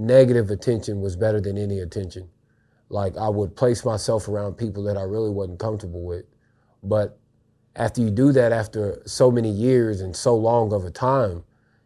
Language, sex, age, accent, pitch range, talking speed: English, male, 30-49, American, 100-120 Hz, 175 wpm